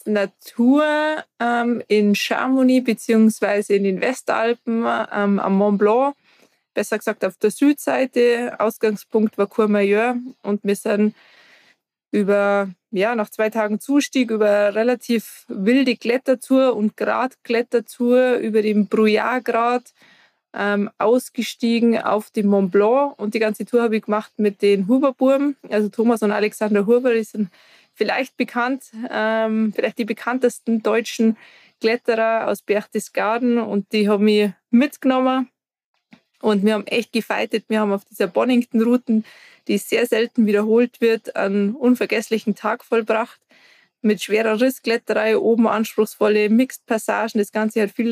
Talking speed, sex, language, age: 135 wpm, female, German, 20-39